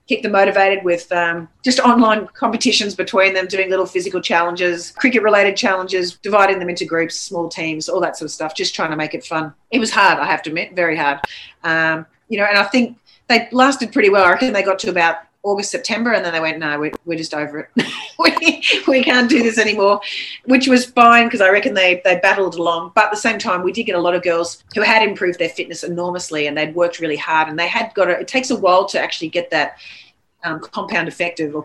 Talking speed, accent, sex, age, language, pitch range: 240 wpm, Australian, female, 30-49, English, 160-195 Hz